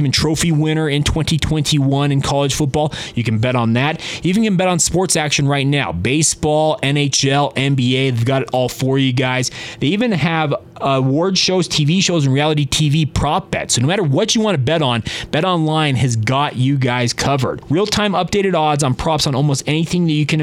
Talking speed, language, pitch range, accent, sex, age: 210 wpm, English, 130-165 Hz, American, male, 20-39